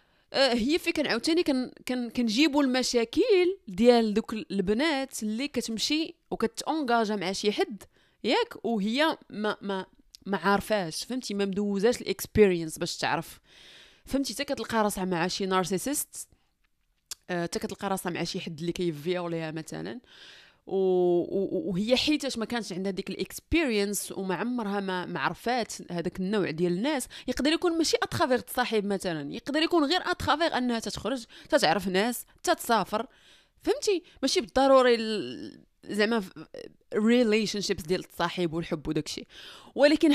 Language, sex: Arabic, female